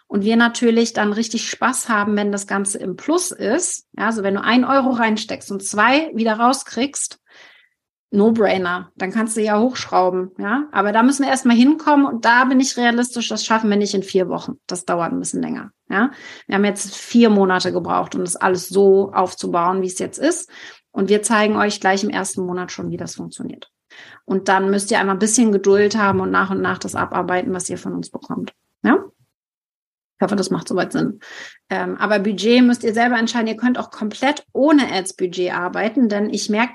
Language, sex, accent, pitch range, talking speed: German, female, German, 200-235 Hz, 205 wpm